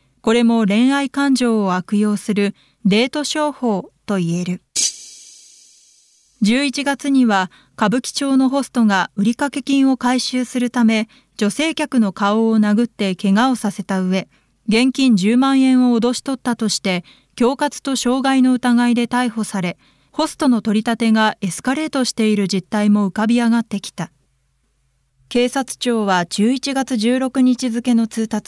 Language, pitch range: Japanese, 200-260 Hz